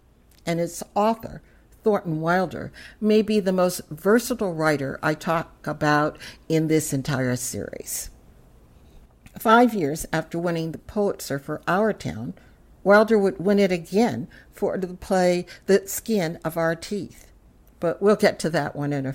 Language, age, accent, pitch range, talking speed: English, 60-79, American, 150-200 Hz, 150 wpm